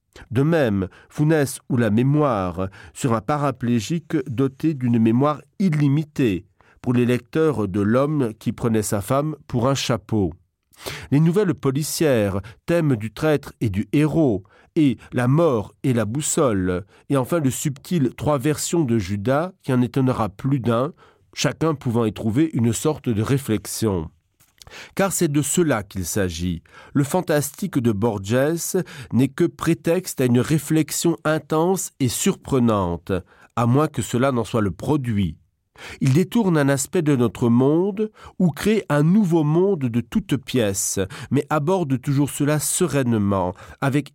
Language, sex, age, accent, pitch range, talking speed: French, male, 40-59, French, 110-155 Hz, 150 wpm